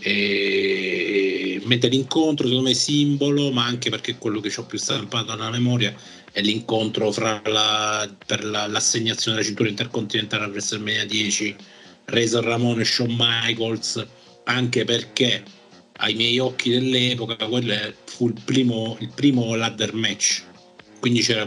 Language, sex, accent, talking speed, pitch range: Italian, male, native, 145 wpm, 105-125 Hz